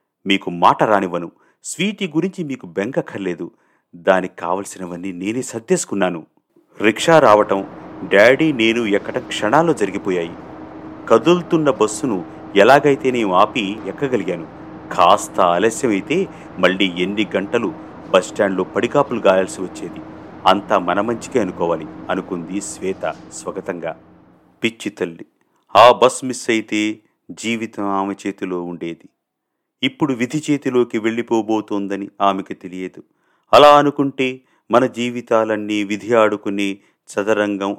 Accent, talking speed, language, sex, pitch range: native, 100 wpm, Telugu, male, 100-140 Hz